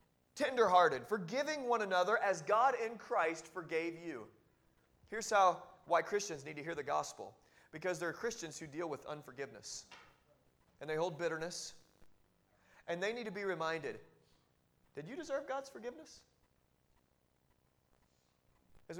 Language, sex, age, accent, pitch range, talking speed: English, male, 30-49, American, 155-220 Hz, 135 wpm